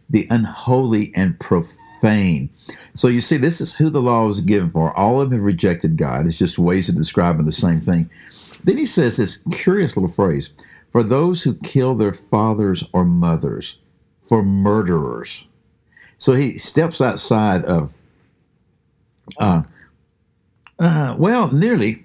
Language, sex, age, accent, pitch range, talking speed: English, male, 60-79, American, 95-155 Hz, 150 wpm